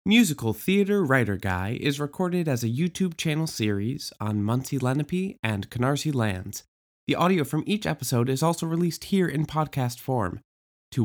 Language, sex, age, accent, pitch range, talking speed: English, male, 20-39, American, 115-185 Hz, 165 wpm